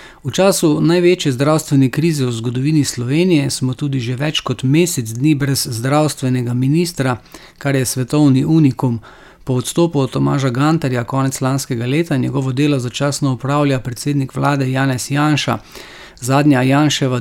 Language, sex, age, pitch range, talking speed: English, male, 40-59, 130-150 Hz, 140 wpm